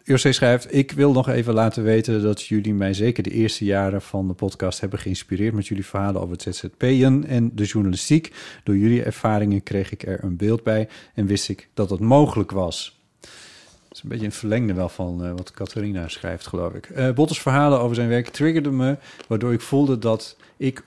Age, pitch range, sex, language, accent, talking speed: 40-59, 100-130 Hz, male, Dutch, Dutch, 205 wpm